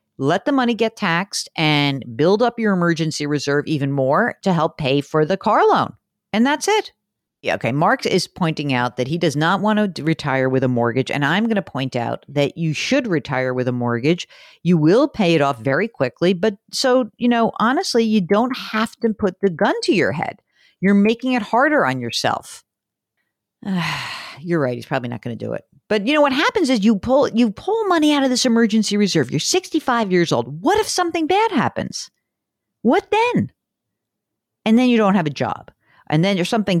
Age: 50-69